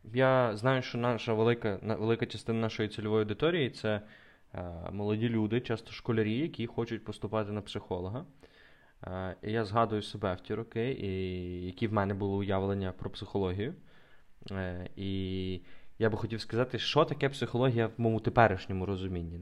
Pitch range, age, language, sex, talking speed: 105-130 Hz, 20-39, Ukrainian, male, 145 wpm